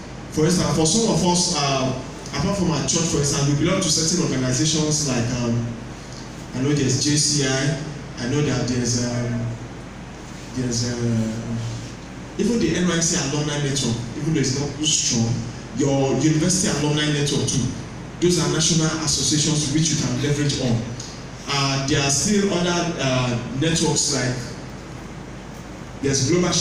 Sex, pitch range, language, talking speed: male, 130-160 Hz, English, 150 wpm